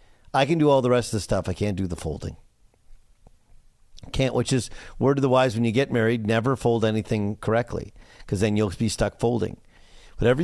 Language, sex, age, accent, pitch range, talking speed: English, male, 50-69, American, 100-135 Hz, 205 wpm